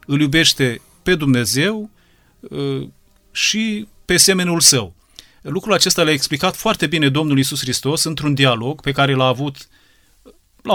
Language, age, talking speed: Romanian, 30-49, 140 wpm